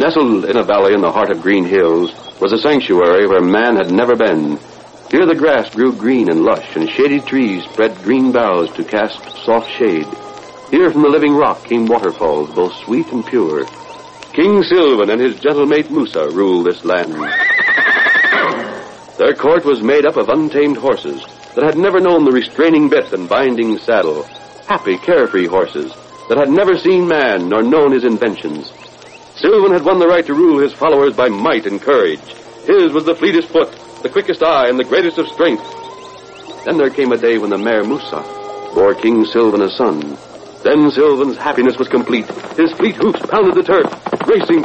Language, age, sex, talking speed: English, 60-79, male, 185 wpm